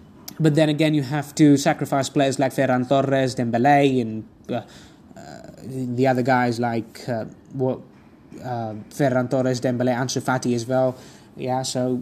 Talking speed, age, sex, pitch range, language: 150 wpm, 20-39, male, 130-160 Hz, English